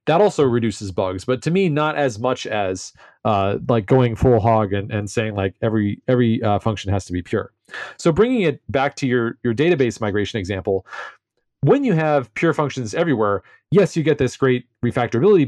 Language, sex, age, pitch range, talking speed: English, male, 30-49, 110-140 Hz, 195 wpm